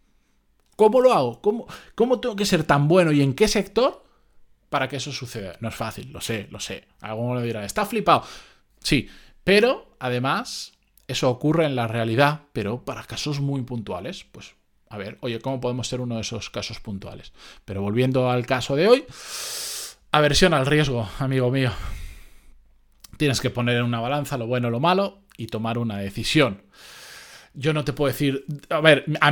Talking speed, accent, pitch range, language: 180 wpm, Spanish, 115-150 Hz, Spanish